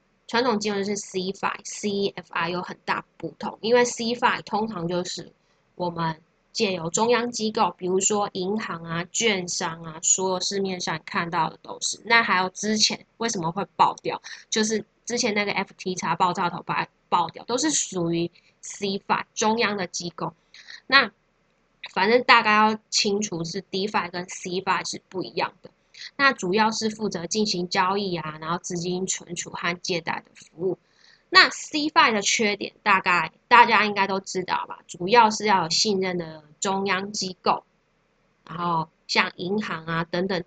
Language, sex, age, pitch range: Chinese, female, 10-29, 175-215 Hz